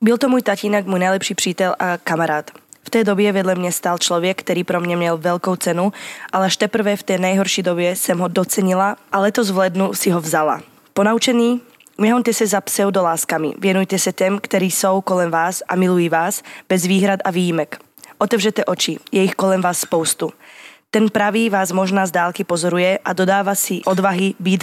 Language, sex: Slovak, female